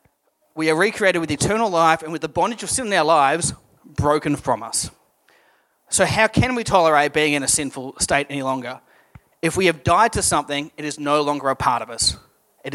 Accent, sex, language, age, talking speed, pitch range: Australian, male, English, 30-49, 210 wpm, 135-165 Hz